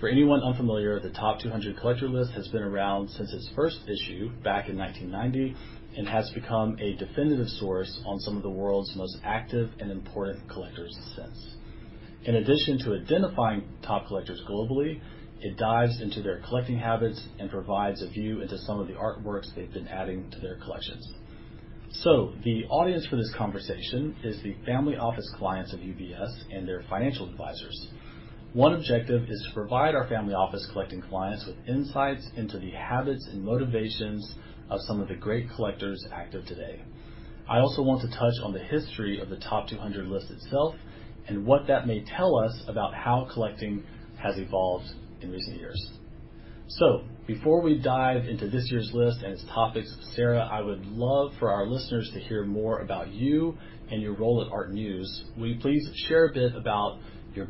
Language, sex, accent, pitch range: English, male, American, 100-120 Hz